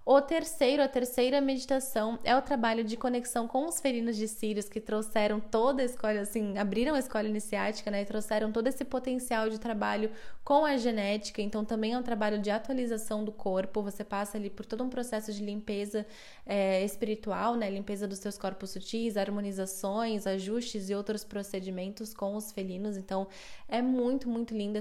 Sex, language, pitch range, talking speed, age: female, Portuguese, 200-235 Hz, 180 wpm, 10-29